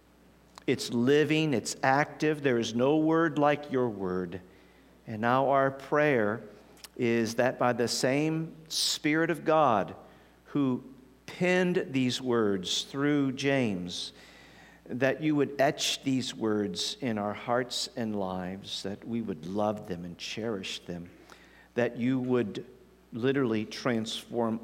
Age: 50-69